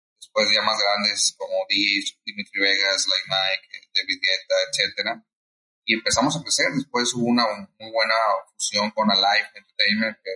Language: Spanish